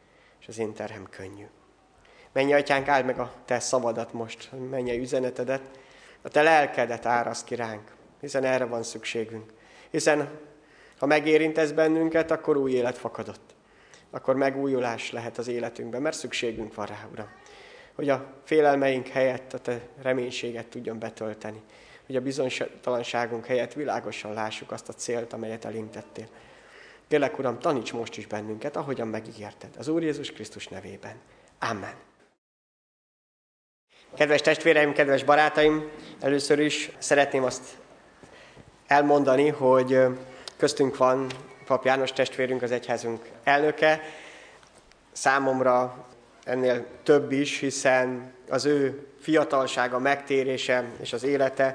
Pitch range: 120-140 Hz